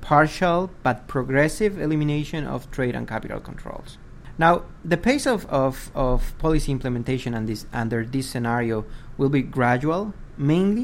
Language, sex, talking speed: English, male, 140 wpm